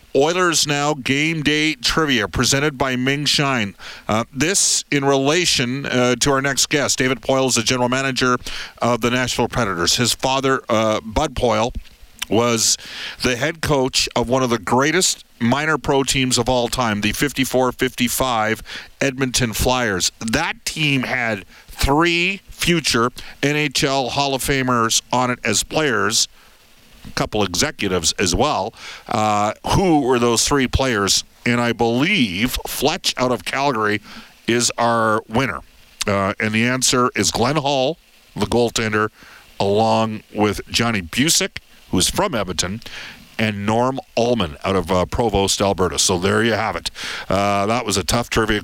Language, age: English, 50-69